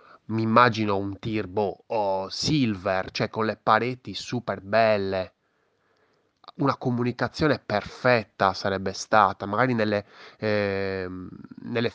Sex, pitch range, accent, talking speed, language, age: male, 100-120 Hz, native, 95 wpm, Italian, 20-39